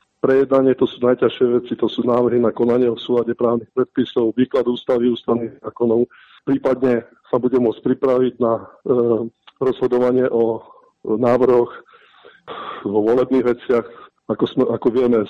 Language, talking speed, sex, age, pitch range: Slovak, 135 wpm, male, 50-69, 115-135 Hz